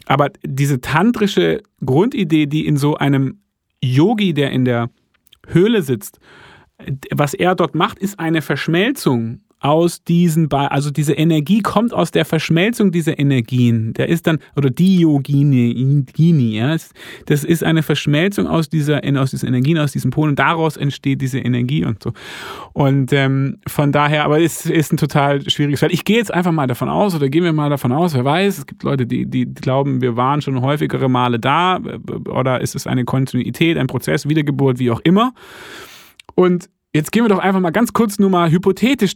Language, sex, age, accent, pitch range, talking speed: German, male, 30-49, German, 135-175 Hz, 180 wpm